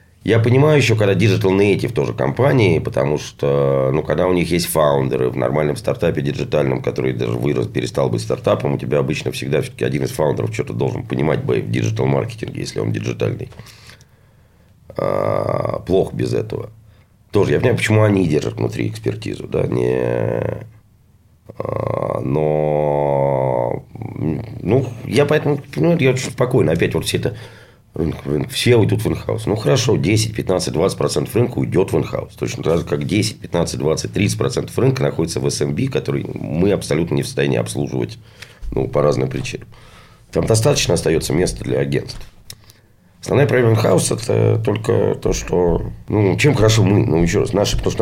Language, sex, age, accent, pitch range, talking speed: Russian, male, 40-59, native, 75-120 Hz, 160 wpm